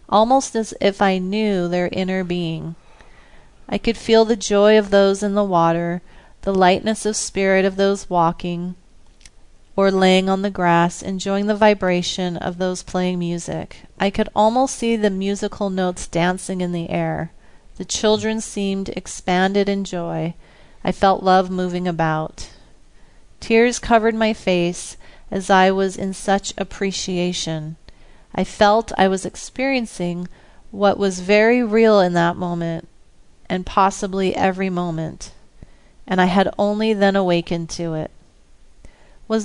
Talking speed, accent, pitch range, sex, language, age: 145 wpm, American, 175-205 Hz, female, English, 40-59